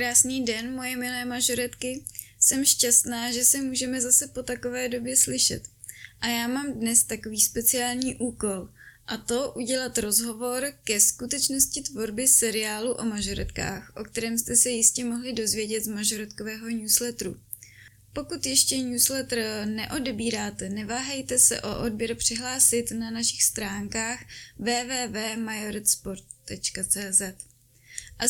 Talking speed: 120 wpm